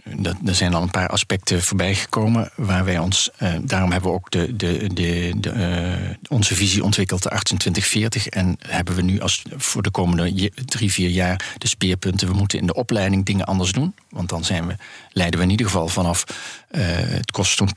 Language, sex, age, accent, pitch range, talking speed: Dutch, male, 40-59, Dutch, 95-110 Hz, 195 wpm